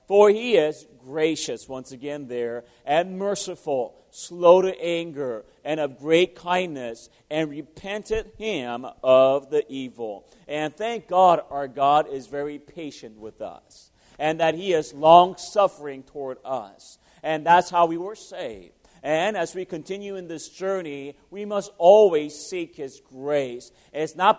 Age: 40-59